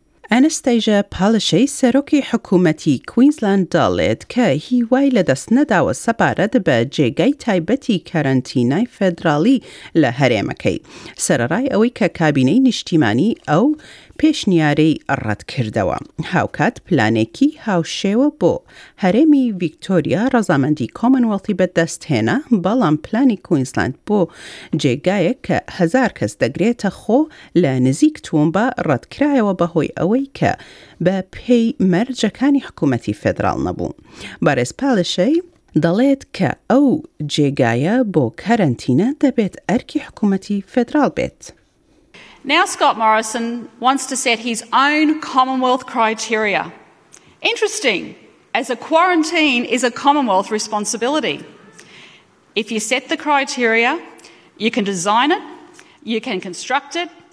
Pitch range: 185-275 Hz